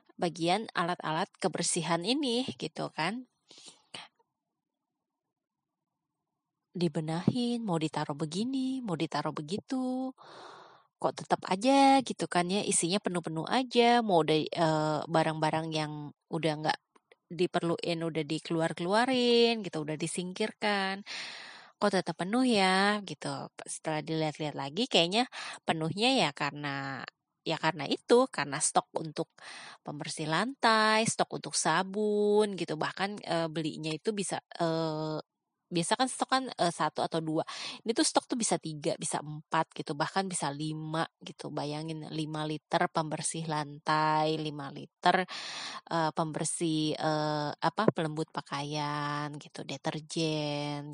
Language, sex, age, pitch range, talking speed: Indonesian, female, 20-39, 155-205 Hz, 120 wpm